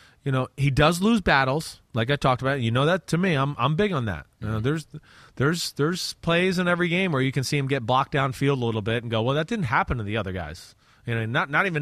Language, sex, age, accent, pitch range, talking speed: English, male, 30-49, American, 120-175 Hz, 280 wpm